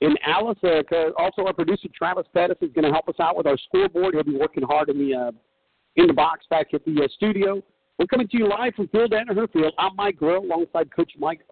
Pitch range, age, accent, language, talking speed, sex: 155-225 Hz, 50-69, American, English, 240 wpm, male